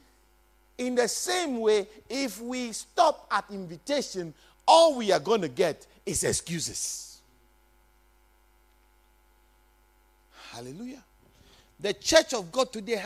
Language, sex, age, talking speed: English, male, 50-69, 105 wpm